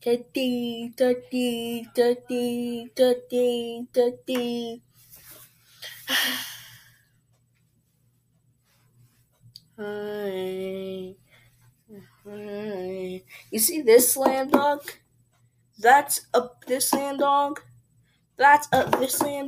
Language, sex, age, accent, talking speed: English, female, 20-39, American, 65 wpm